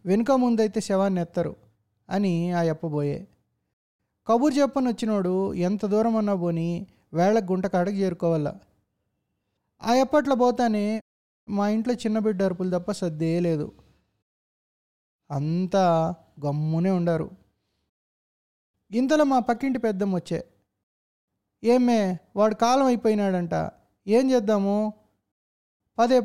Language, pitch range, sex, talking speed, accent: Telugu, 165-220 Hz, male, 95 wpm, native